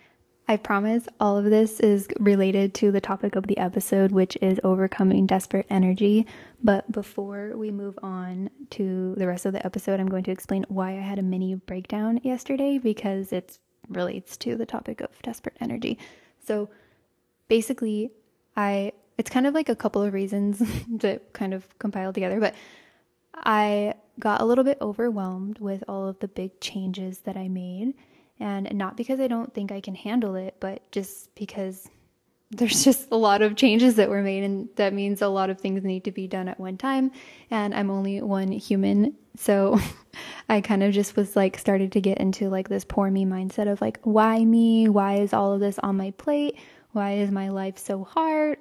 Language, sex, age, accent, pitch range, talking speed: English, female, 10-29, American, 195-220 Hz, 195 wpm